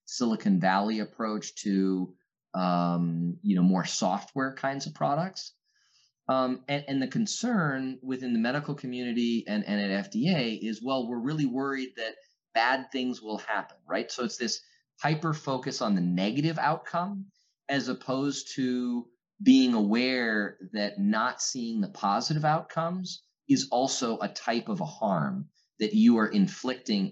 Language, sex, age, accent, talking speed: English, male, 30-49, American, 145 wpm